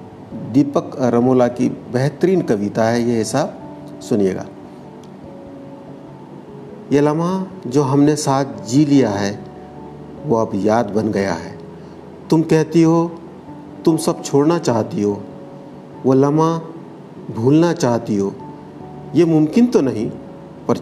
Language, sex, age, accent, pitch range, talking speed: Hindi, male, 50-69, native, 105-145 Hz, 120 wpm